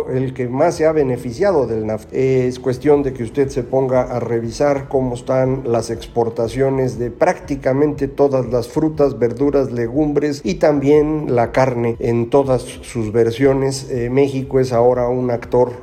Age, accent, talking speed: 50-69, Mexican, 160 wpm